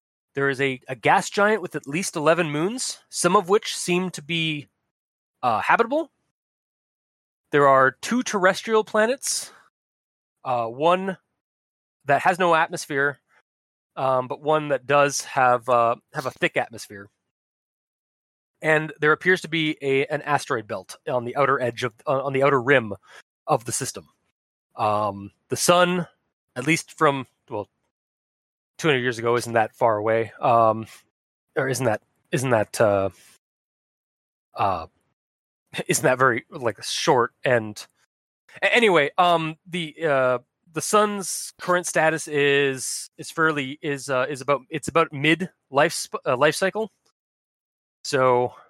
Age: 20-39